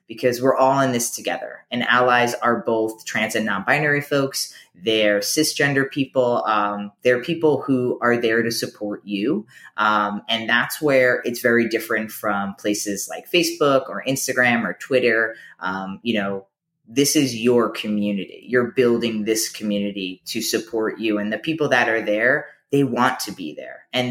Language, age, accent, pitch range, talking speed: English, 20-39, American, 115-150 Hz, 170 wpm